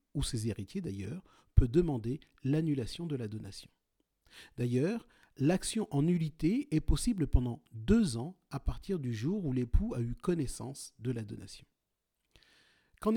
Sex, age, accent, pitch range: male, 40-59, French, 125-185 Hz